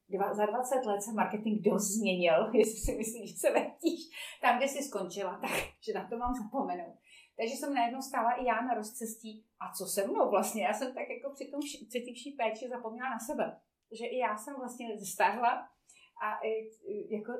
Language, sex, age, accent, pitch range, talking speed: Czech, female, 30-49, native, 215-245 Hz, 190 wpm